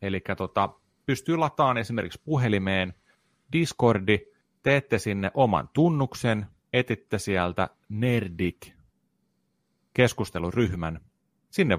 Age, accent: 30-49, native